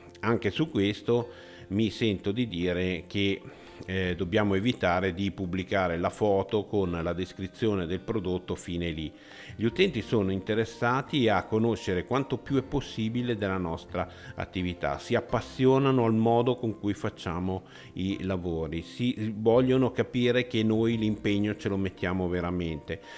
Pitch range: 90-110 Hz